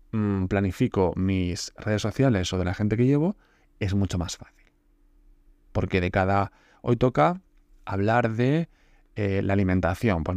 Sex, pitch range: male, 95-120 Hz